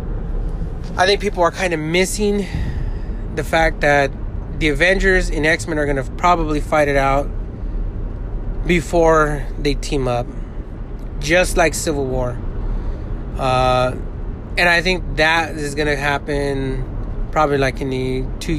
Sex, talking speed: male, 140 wpm